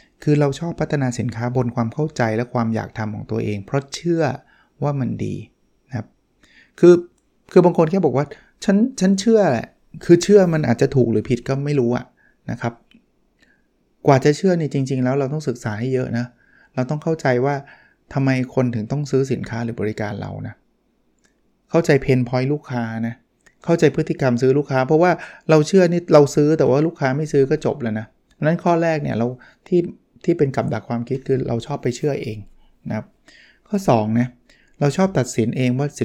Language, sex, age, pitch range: Thai, male, 20-39, 120-155 Hz